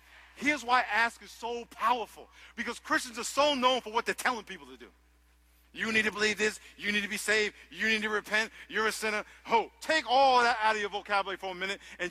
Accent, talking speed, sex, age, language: American, 235 wpm, male, 50-69, English